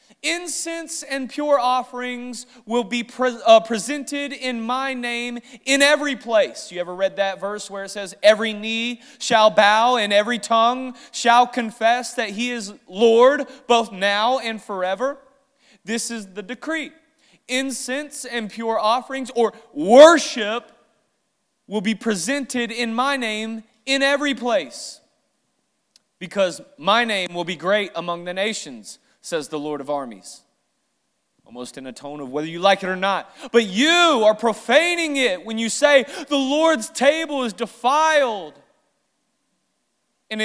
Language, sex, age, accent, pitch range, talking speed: English, male, 30-49, American, 215-275 Hz, 145 wpm